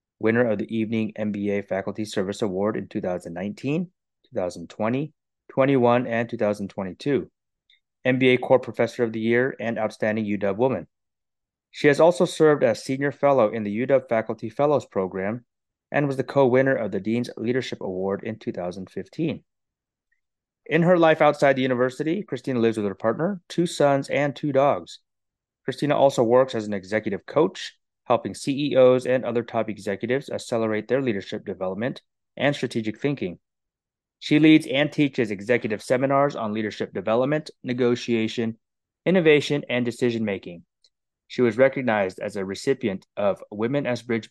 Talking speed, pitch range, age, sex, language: 145 wpm, 110-135 Hz, 30-49, male, English